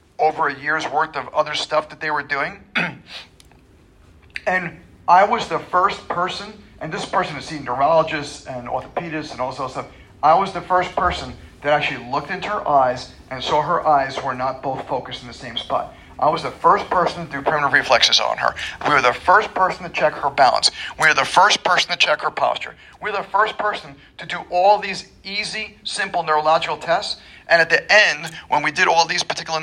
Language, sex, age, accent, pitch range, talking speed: English, male, 50-69, American, 130-180 Hz, 215 wpm